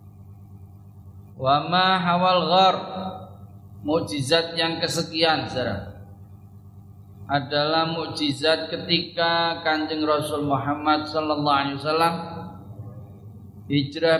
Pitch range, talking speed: 100-150 Hz, 70 wpm